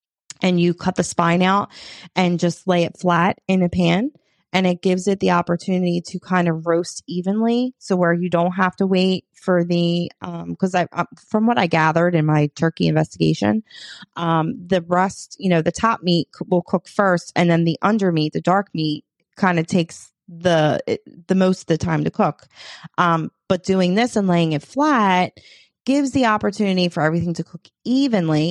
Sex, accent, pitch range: female, American, 170-195 Hz